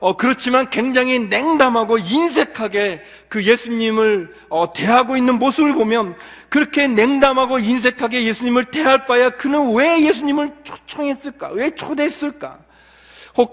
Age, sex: 40-59, male